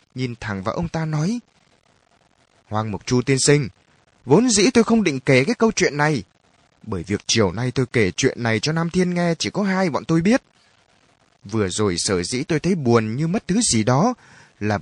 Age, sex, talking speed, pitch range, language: 20-39, male, 210 wpm, 110-180 Hz, Vietnamese